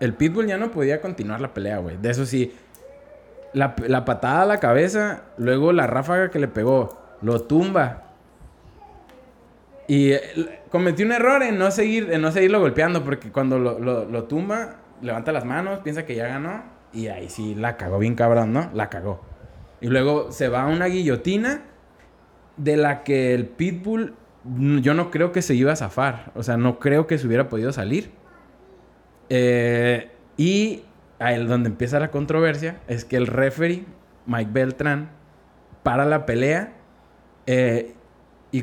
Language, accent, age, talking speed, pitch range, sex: Spanish, Mexican, 20-39, 165 wpm, 115-165 Hz, male